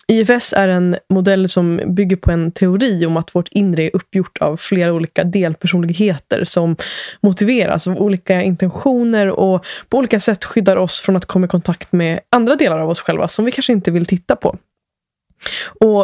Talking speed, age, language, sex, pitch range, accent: 185 wpm, 20-39, Swedish, female, 170-200 Hz, native